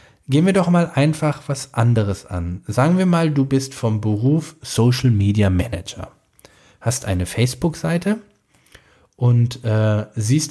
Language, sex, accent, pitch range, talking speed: German, male, German, 115-140 Hz, 135 wpm